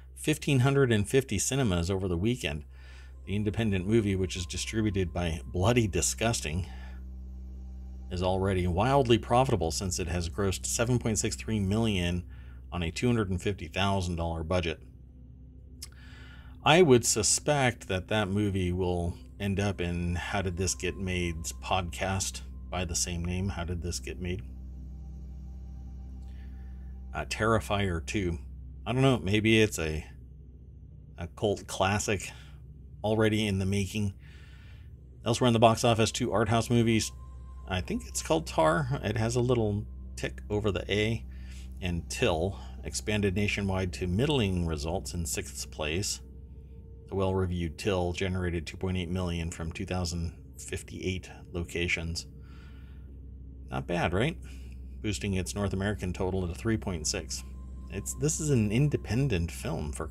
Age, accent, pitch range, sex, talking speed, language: 50-69, American, 70-105 Hz, male, 125 wpm, English